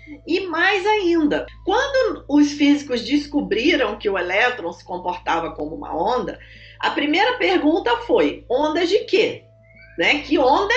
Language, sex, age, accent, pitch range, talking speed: Portuguese, female, 40-59, Brazilian, 260-395 Hz, 135 wpm